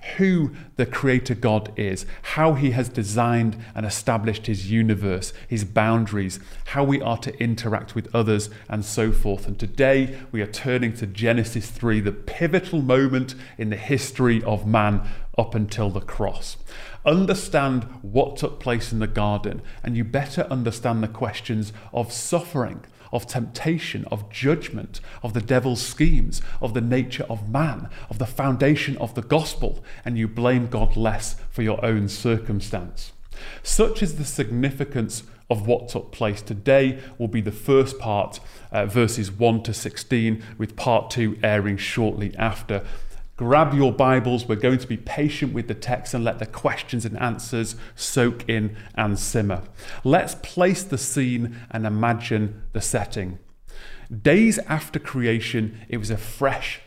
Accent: British